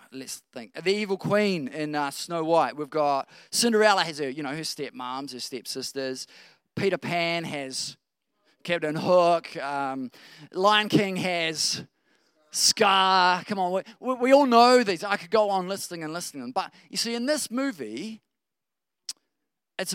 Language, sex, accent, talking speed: English, male, Australian, 155 wpm